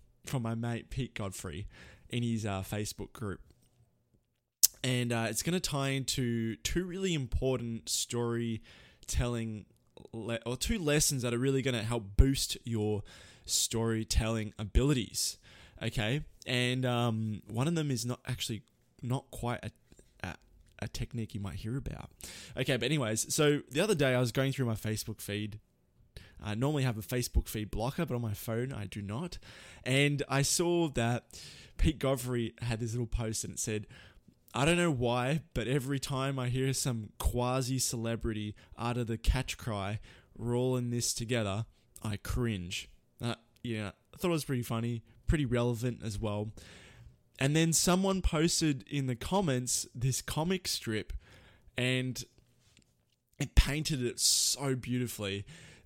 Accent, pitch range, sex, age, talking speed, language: Australian, 110-135 Hz, male, 20-39, 155 wpm, English